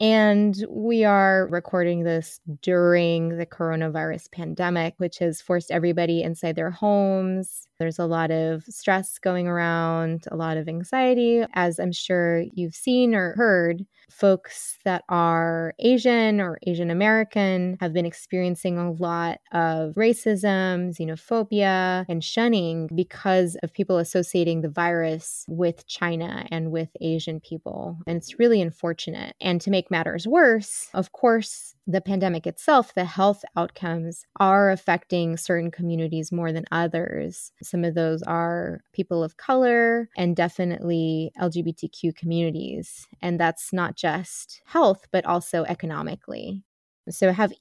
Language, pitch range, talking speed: English, 165-200 Hz, 135 wpm